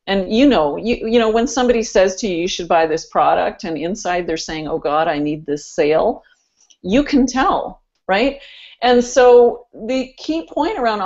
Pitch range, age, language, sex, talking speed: 185-235 Hz, 40-59, English, female, 195 wpm